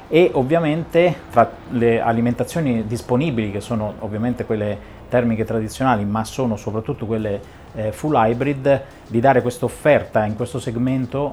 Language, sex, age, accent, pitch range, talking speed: Italian, male, 30-49, native, 105-125 Hz, 140 wpm